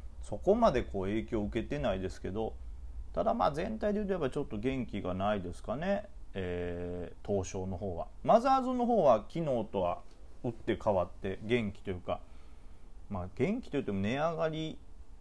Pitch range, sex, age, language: 90-130 Hz, male, 30-49, Japanese